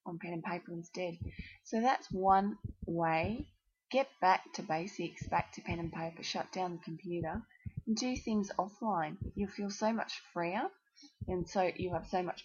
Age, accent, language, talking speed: 20-39, Australian, English, 180 wpm